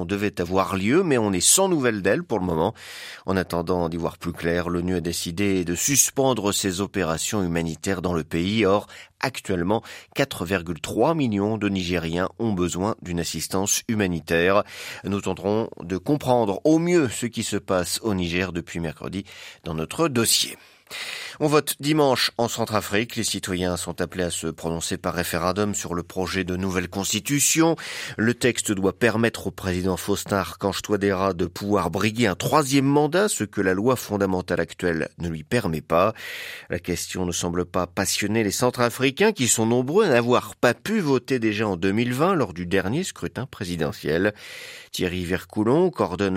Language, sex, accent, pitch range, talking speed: French, male, French, 90-115 Hz, 165 wpm